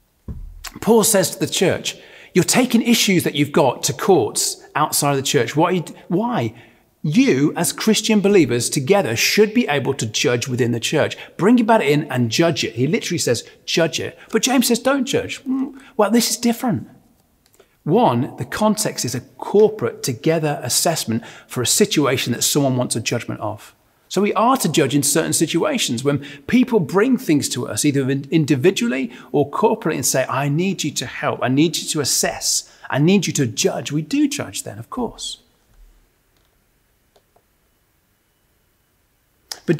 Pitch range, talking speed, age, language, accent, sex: 140-225 Hz, 165 wpm, 40-59, English, British, male